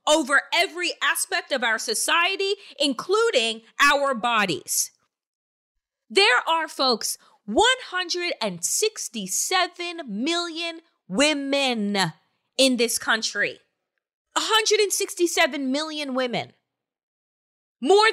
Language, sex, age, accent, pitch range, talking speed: English, female, 30-49, American, 255-350 Hz, 75 wpm